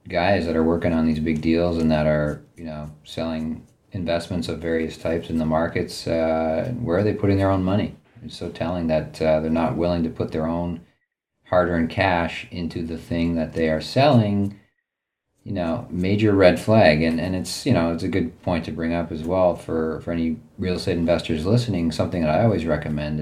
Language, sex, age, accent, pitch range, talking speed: English, male, 40-59, American, 80-90 Hz, 210 wpm